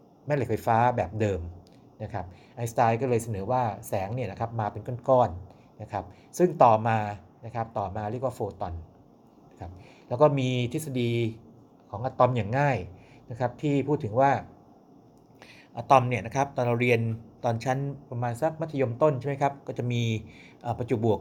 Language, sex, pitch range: Thai, male, 110-135 Hz